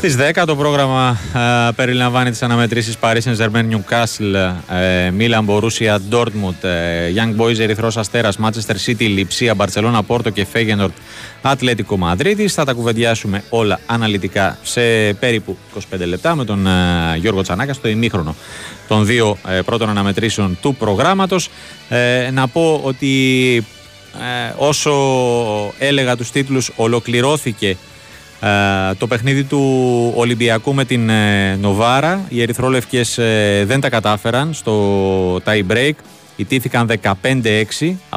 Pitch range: 100-125 Hz